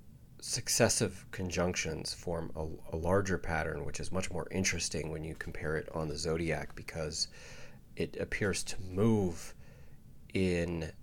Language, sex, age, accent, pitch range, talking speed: English, male, 30-49, American, 80-90 Hz, 135 wpm